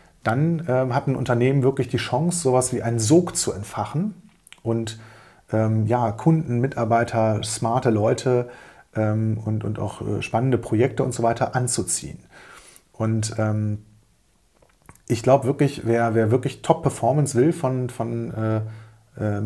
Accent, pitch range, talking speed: German, 110-130 Hz, 140 wpm